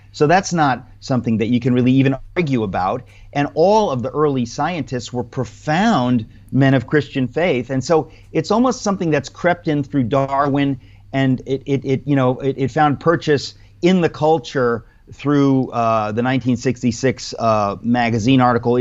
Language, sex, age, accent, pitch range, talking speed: English, male, 40-59, American, 115-140 Hz, 170 wpm